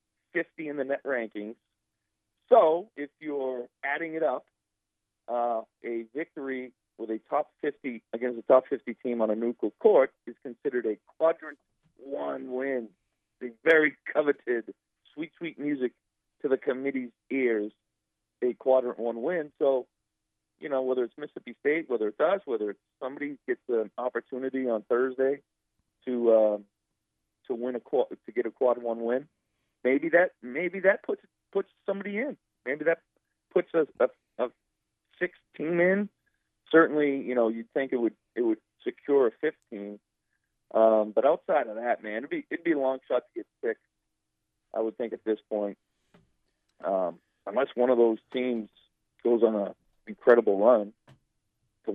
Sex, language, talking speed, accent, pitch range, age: male, English, 165 wpm, American, 110-155 Hz, 40-59